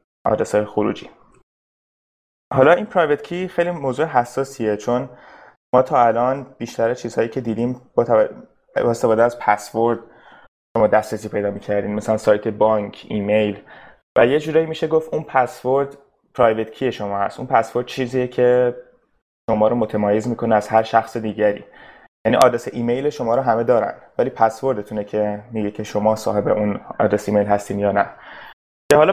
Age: 20-39